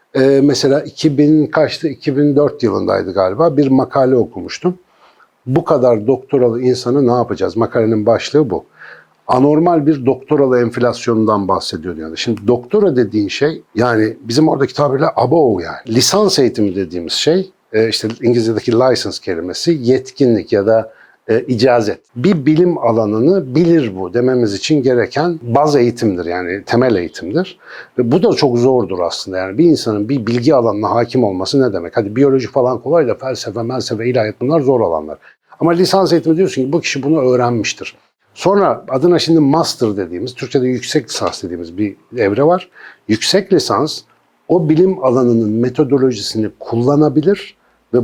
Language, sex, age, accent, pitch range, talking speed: Turkish, male, 60-79, native, 115-150 Hz, 145 wpm